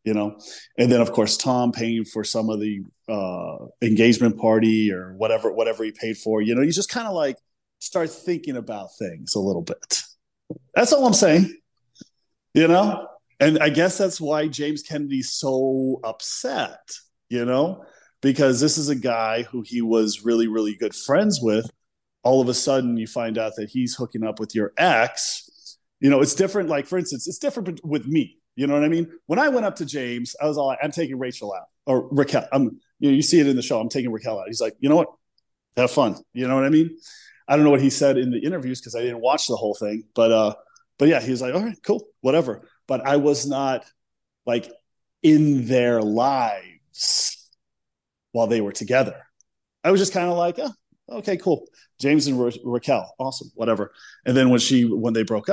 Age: 30-49